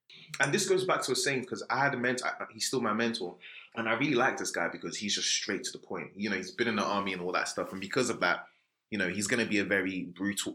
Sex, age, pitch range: male, 20-39, 105-155 Hz